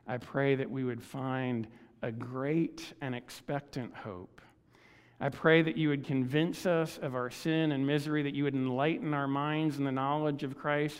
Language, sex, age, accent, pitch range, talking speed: English, male, 50-69, American, 140-170 Hz, 185 wpm